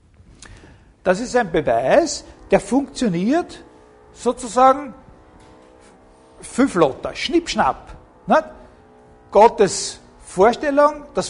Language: German